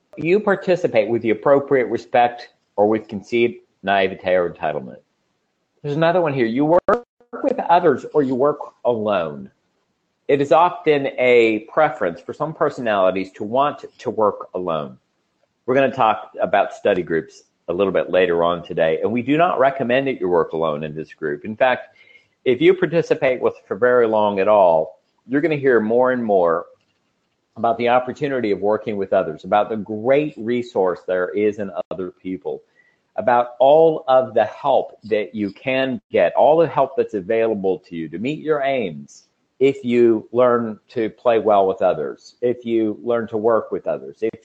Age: 50-69